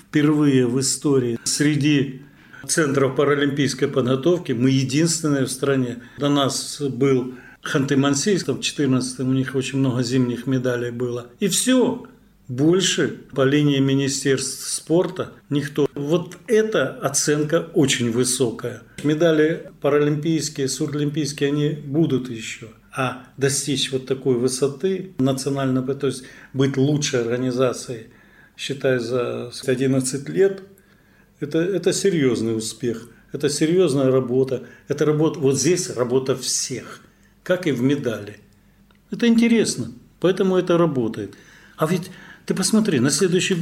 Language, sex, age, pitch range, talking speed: Russian, male, 40-59, 130-165 Hz, 120 wpm